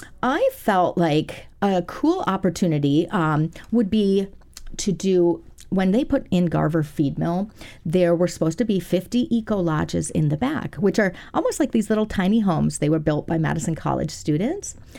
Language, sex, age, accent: English, female, 40-59, American